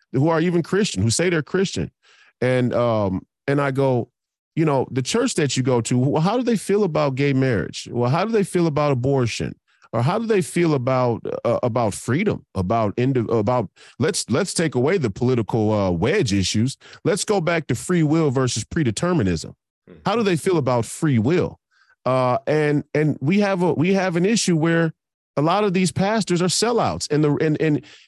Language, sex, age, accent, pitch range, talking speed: English, male, 40-59, American, 120-165 Hz, 200 wpm